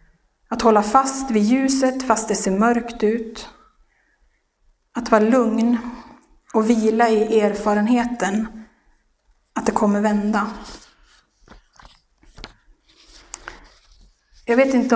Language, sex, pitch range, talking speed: Swedish, female, 205-235 Hz, 95 wpm